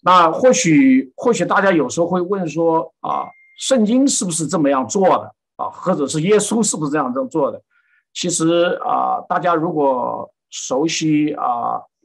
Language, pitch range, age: Chinese, 145-215 Hz, 50-69